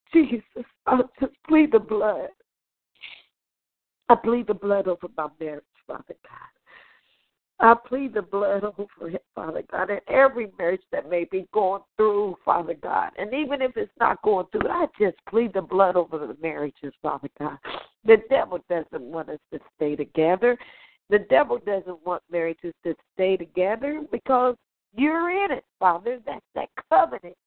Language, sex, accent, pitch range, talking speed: English, female, American, 170-245 Hz, 160 wpm